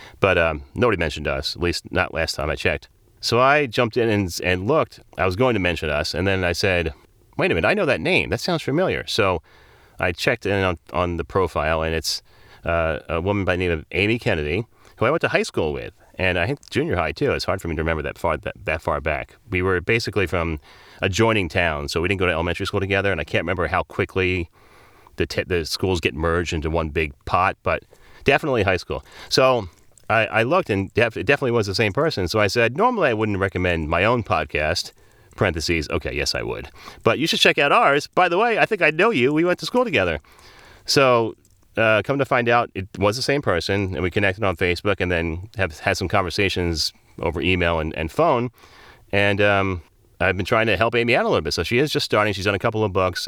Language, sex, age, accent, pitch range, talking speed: English, male, 30-49, American, 85-110 Hz, 240 wpm